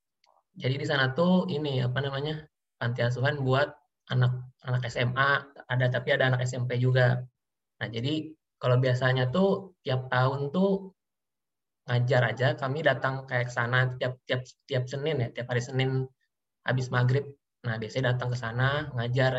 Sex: male